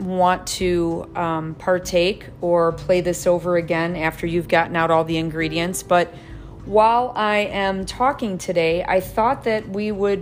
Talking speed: 160 wpm